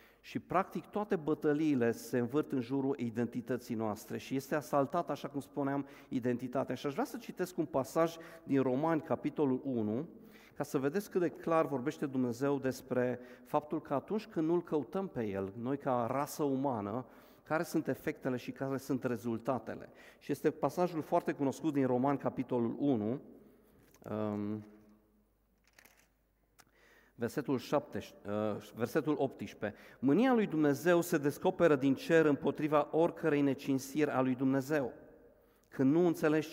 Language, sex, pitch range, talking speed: Romanian, male, 130-160 Hz, 140 wpm